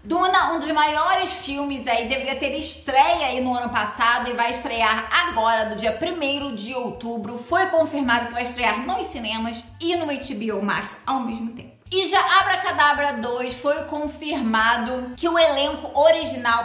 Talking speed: 165 wpm